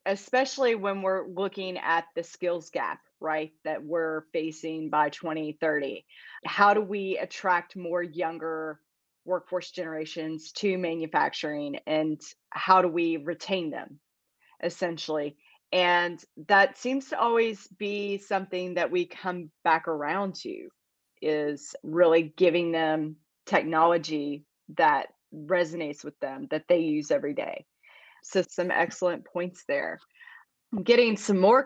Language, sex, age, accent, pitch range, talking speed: English, female, 30-49, American, 160-200 Hz, 125 wpm